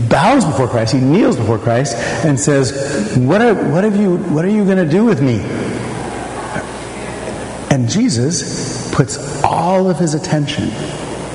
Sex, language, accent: male, English, American